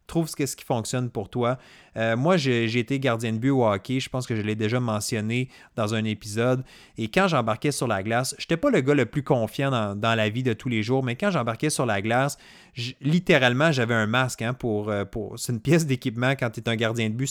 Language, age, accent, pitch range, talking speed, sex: French, 30-49, Canadian, 120-150 Hz, 255 wpm, male